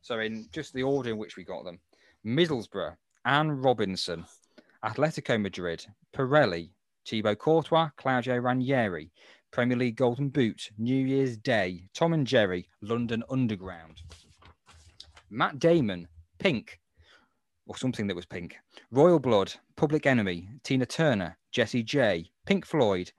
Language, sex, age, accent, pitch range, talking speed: English, male, 30-49, British, 95-145 Hz, 130 wpm